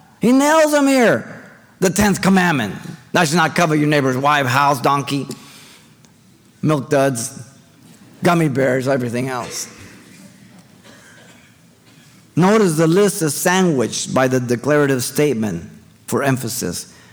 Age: 50-69